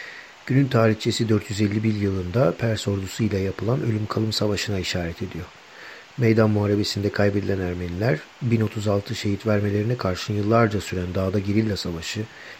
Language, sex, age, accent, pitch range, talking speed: Turkish, male, 50-69, native, 100-115 Hz, 120 wpm